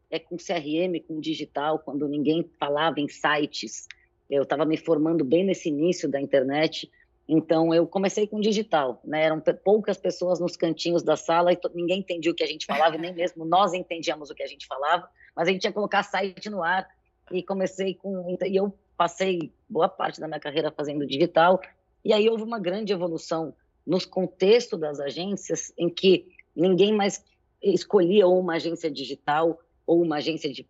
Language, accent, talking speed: Portuguese, Brazilian, 180 wpm